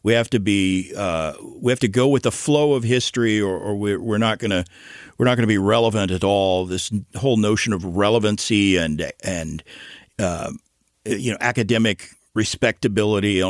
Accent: American